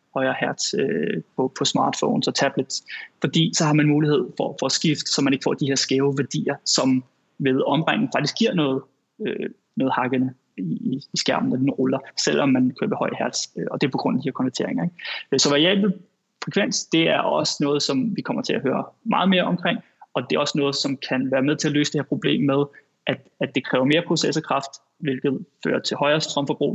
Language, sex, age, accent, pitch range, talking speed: Danish, male, 20-39, native, 140-170 Hz, 220 wpm